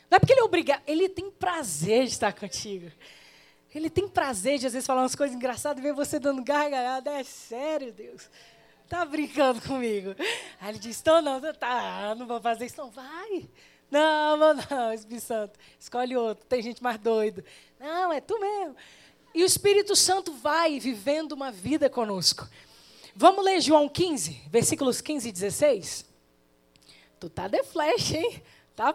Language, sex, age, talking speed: Portuguese, female, 20-39, 175 wpm